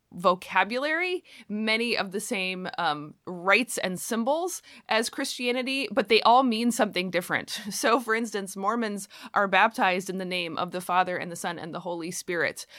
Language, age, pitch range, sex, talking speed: English, 20-39, 180-225 Hz, female, 170 wpm